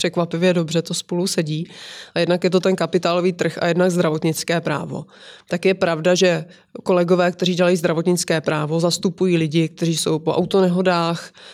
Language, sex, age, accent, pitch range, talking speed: Czech, female, 20-39, native, 170-190 Hz, 160 wpm